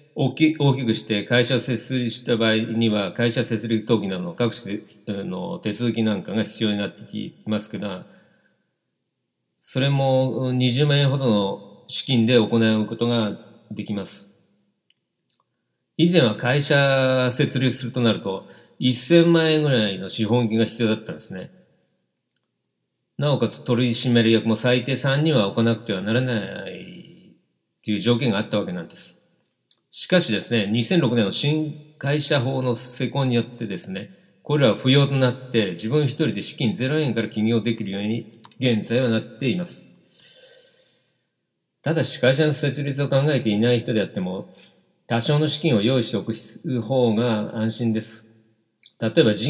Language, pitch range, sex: Japanese, 110-135 Hz, male